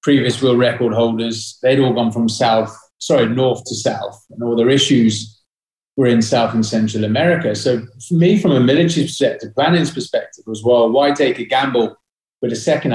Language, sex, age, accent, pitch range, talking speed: English, male, 30-49, British, 115-155 Hz, 190 wpm